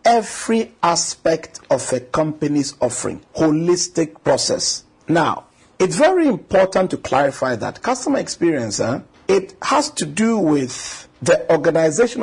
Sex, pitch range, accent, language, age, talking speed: male, 140-180 Hz, Nigerian, English, 50-69, 125 wpm